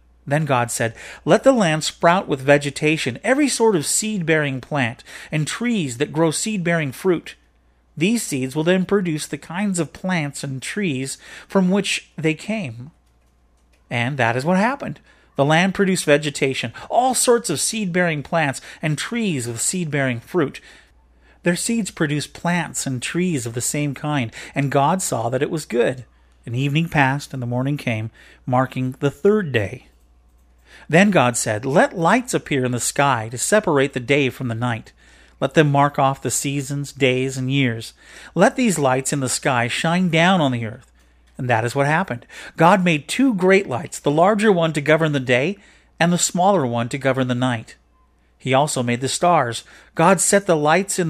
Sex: male